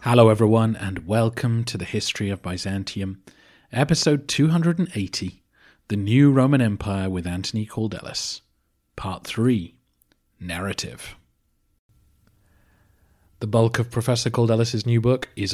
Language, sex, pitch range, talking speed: English, male, 100-120 Hz, 110 wpm